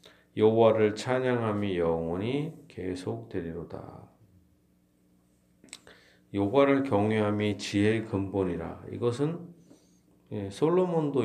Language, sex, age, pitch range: Korean, male, 40-59, 85-130 Hz